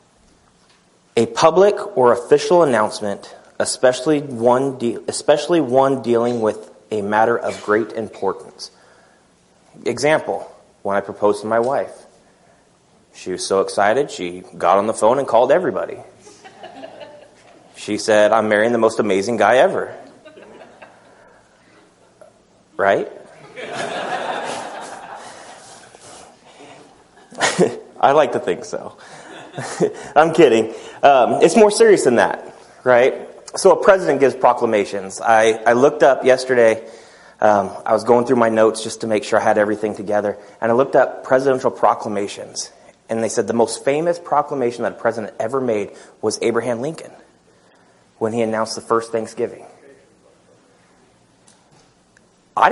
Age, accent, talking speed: 30-49, American, 125 wpm